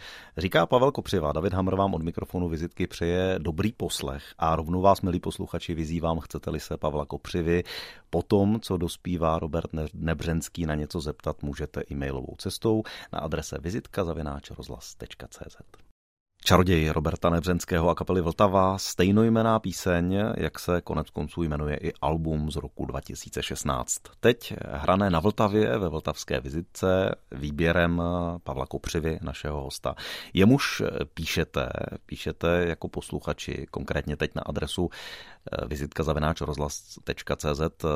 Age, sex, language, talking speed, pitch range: 30-49, male, Czech, 125 wpm, 75-90 Hz